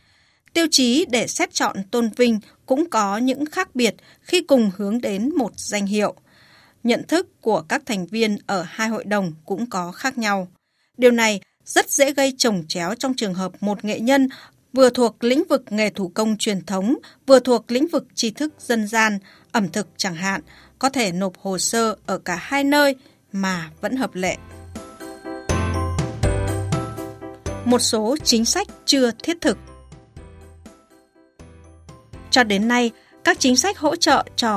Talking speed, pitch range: 165 wpm, 190-260 Hz